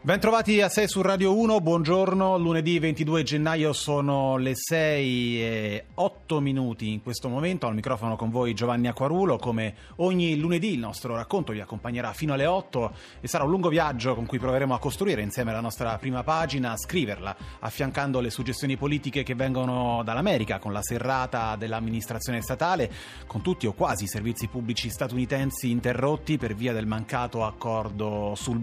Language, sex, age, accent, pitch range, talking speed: Italian, male, 30-49, native, 115-150 Hz, 170 wpm